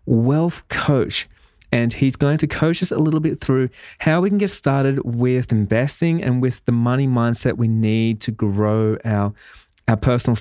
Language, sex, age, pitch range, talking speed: English, male, 20-39, 110-135 Hz, 180 wpm